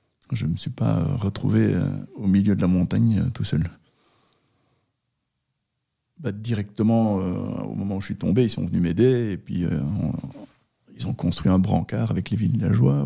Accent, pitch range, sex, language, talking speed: French, 100-130 Hz, male, French, 190 wpm